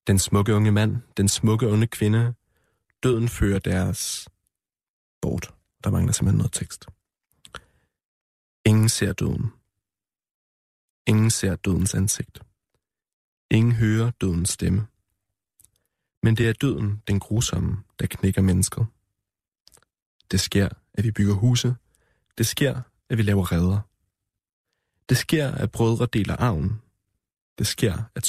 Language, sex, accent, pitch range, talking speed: Danish, male, native, 95-115 Hz, 125 wpm